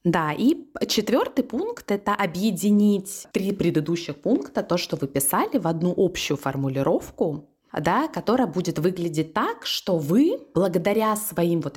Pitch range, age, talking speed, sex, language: 160-235 Hz, 20-39, 145 wpm, female, Russian